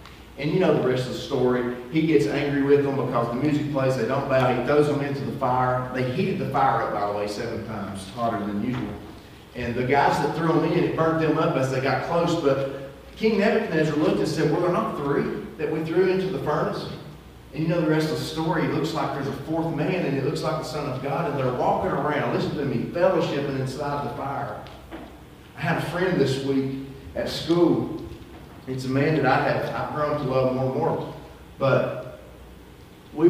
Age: 40-59